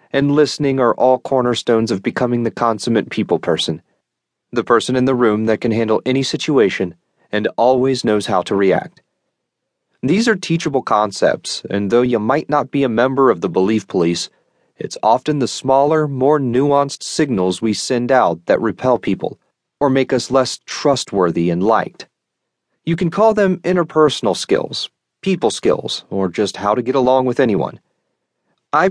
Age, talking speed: 40-59, 165 wpm